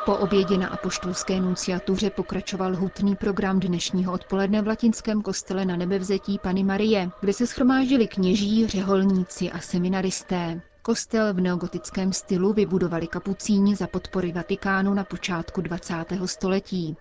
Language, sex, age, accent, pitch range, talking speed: Czech, female, 30-49, native, 185-210 Hz, 130 wpm